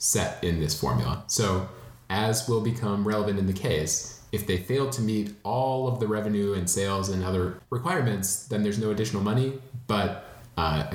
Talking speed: 180 wpm